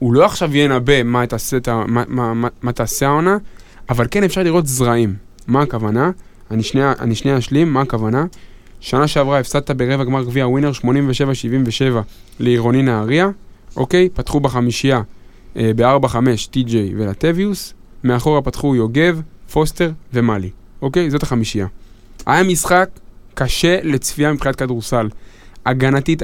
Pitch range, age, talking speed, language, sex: 120-145 Hz, 20-39, 130 wpm, Hebrew, male